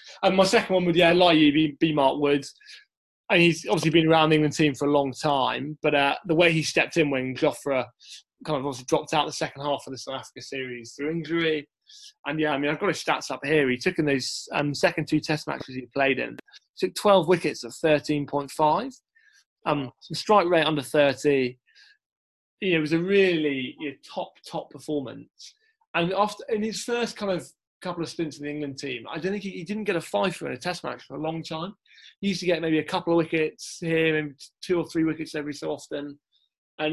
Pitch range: 140-170 Hz